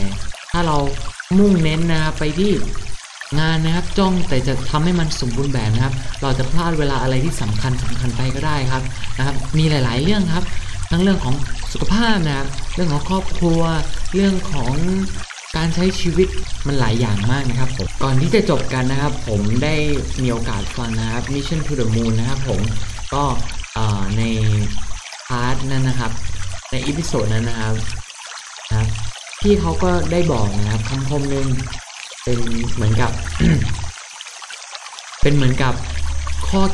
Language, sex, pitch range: Thai, male, 105-145 Hz